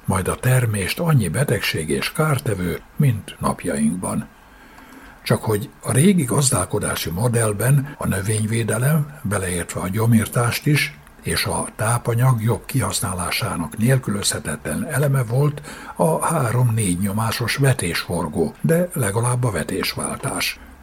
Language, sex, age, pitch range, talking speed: Hungarian, male, 60-79, 105-140 Hz, 105 wpm